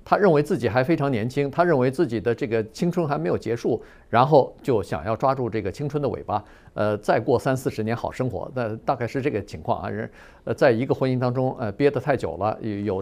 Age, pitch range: 50-69, 115-170 Hz